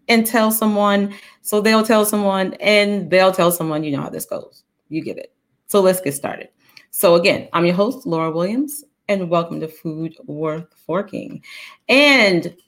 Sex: female